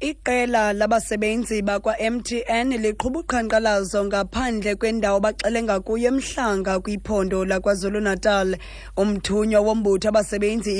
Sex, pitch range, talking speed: female, 195-230 Hz, 120 wpm